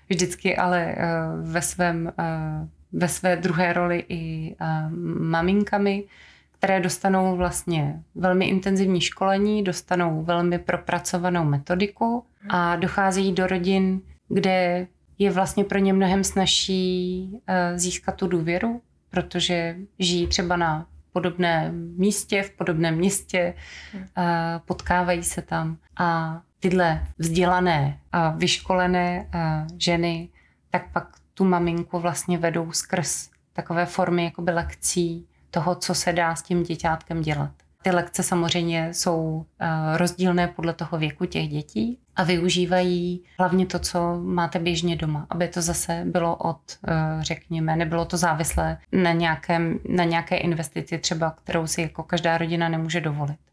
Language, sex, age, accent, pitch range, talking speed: Czech, female, 20-39, native, 165-185 Hz, 120 wpm